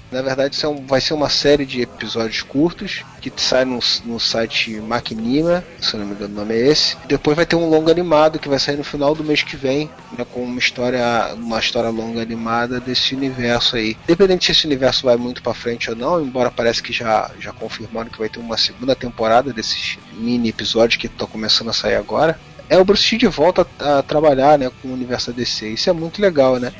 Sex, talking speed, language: male, 230 wpm, Portuguese